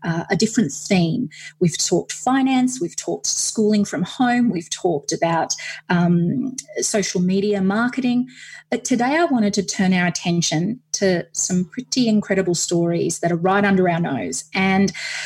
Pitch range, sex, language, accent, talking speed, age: 175-220 Hz, female, English, Australian, 155 wpm, 30-49